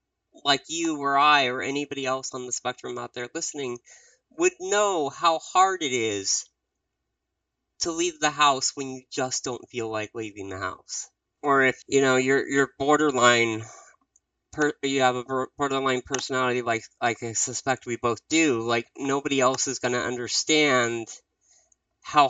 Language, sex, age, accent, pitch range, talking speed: English, male, 30-49, American, 120-150 Hz, 160 wpm